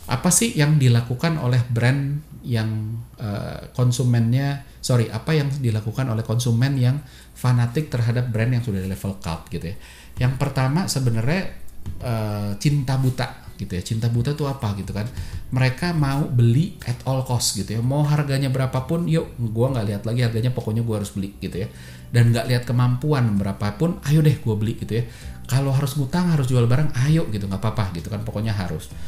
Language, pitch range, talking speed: Indonesian, 105-135 Hz, 180 wpm